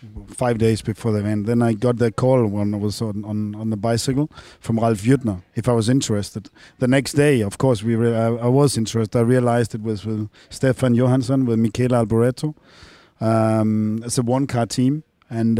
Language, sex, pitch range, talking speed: English, male, 110-130 Hz, 205 wpm